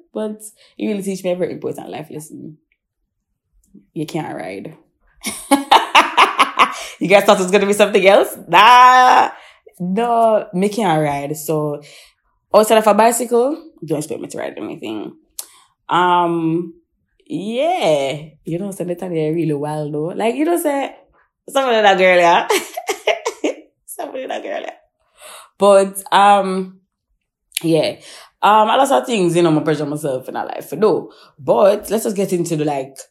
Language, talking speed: English, 165 wpm